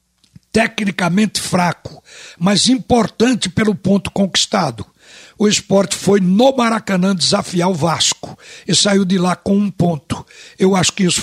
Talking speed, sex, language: 140 wpm, male, Portuguese